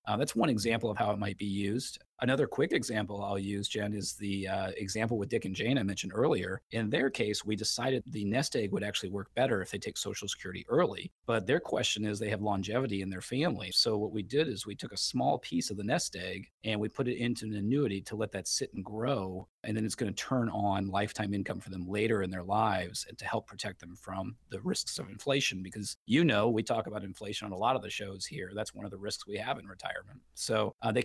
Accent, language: American, English